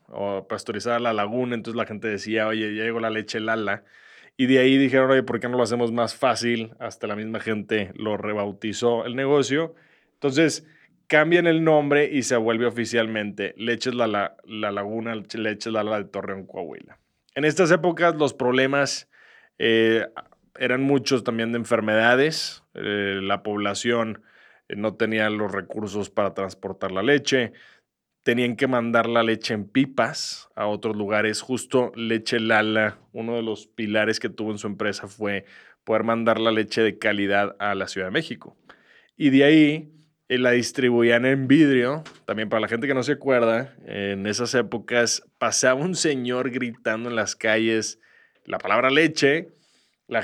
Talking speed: 165 wpm